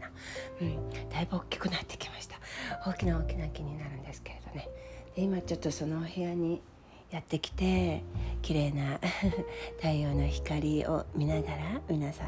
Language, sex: Japanese, female